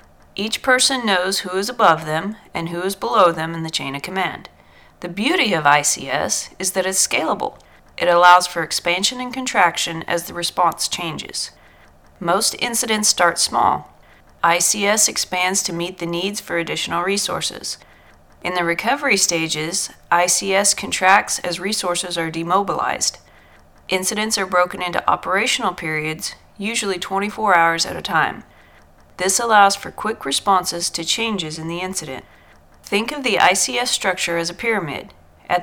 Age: 40-59